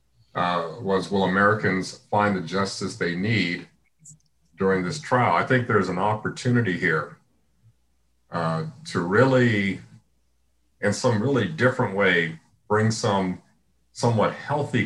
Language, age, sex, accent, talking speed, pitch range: English, 40-59, male, American, 120 wpm, 85-110 Hz